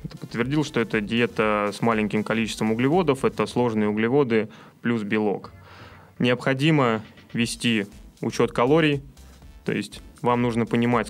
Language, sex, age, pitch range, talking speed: Russian, male, 20-39, 110-125 Hz, 125 wpm